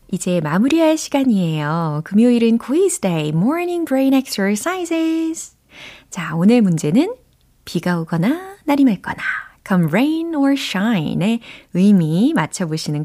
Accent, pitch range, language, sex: native, 165-260 Hz, Korean, female